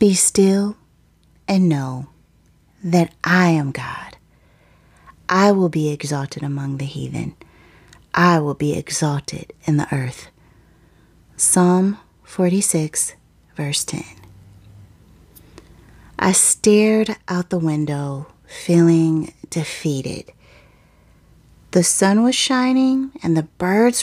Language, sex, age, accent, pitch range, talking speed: English, female, 30-49, American, 160-210 Hz, 100 wpm